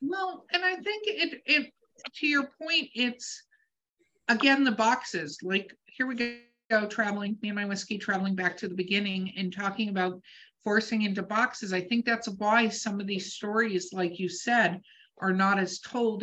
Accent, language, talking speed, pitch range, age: American, English, 180 wpm, 180-235 Hz, 50-69